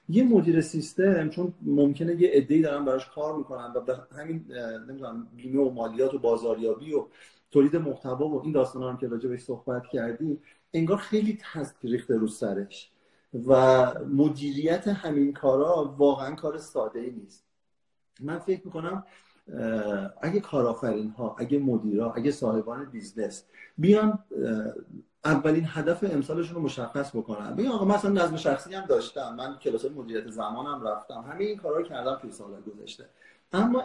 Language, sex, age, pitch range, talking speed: Persian, male, 40-59, 130-195 Hz, 145 wpm